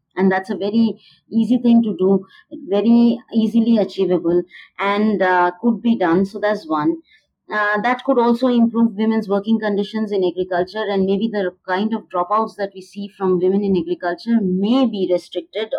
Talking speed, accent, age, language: 170 wpm, Indian, 30-49, English